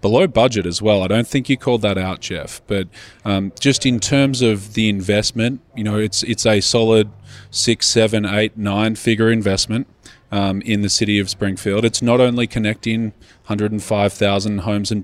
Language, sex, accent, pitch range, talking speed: English, male, Australian, 95-115 Hz, 180 wpm